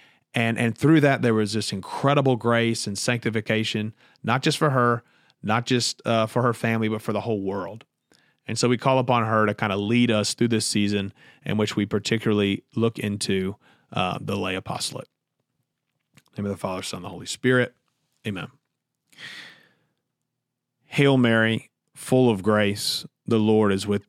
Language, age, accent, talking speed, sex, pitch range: English, 30-49, American, 175 wpm, male, 105-125 Hz